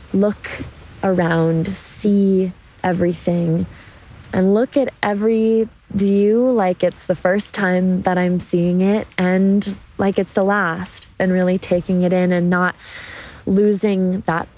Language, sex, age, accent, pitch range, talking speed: English, female, 20-39, American, 170-195 Hz, 130 wpm